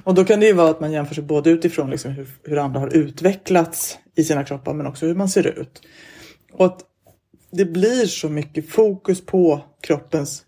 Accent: native